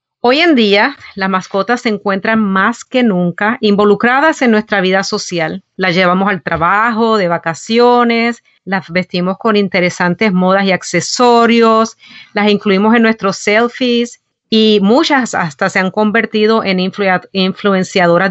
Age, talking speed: 40-59, 135 wpm